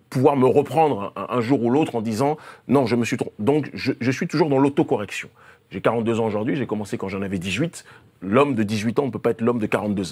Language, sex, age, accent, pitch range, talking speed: French, male, 30-49, French, 105-130 Hz, 250 wpm